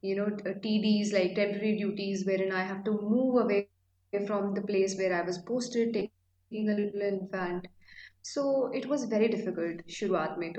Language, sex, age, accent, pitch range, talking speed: English, female, 20-39, Indian, 185-225 Hz, 165 wpm